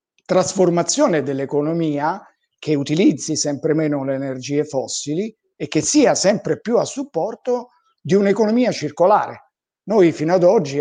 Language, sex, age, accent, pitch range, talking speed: Italian, male, 50-69, native, 140-175 Hz, 130 wpm